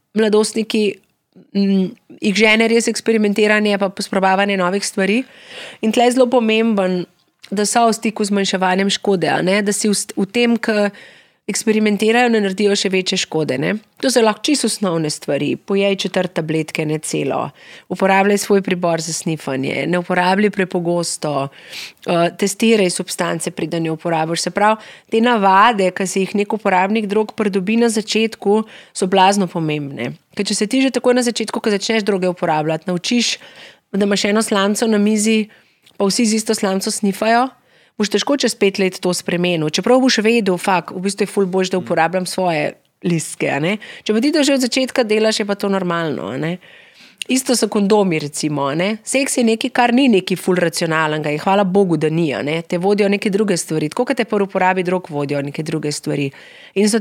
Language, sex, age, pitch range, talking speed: Slovak, female, 30-49, 175-220 Hz, 180 wpm